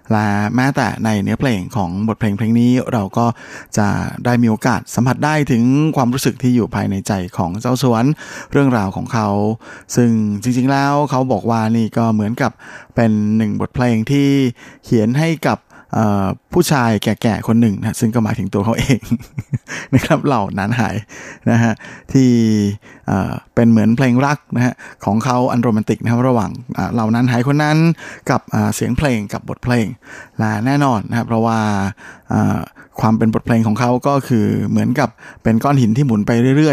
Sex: male